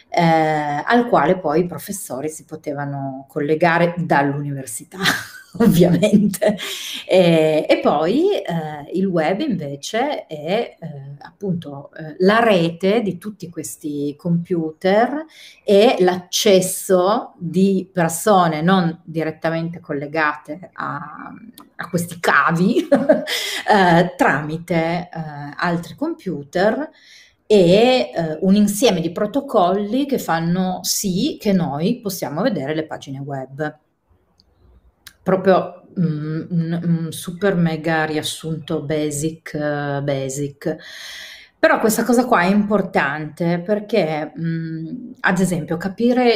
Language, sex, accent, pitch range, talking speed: Italian, female, native, 155-195 Hz, 100 wpm